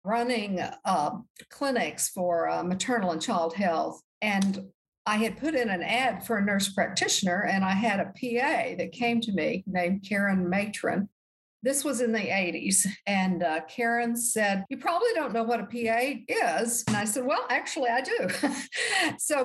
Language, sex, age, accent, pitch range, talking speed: English, female, 50-69, American, 185-240 Hz, 175 wpm